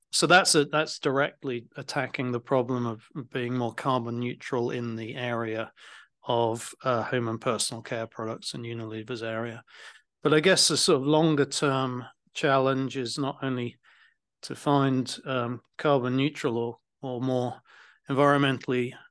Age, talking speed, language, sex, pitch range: 40-59, 150 wpm, English, male, 120-140 Hz